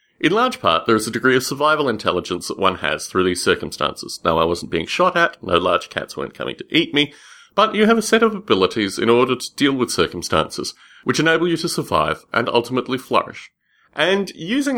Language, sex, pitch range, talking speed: English, male, 115-180 Hz, 215 wpm